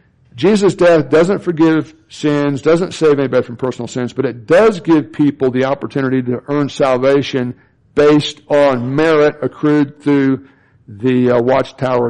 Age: 60-79